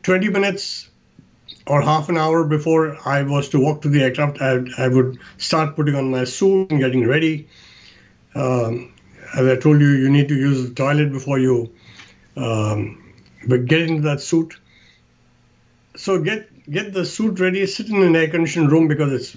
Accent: Indian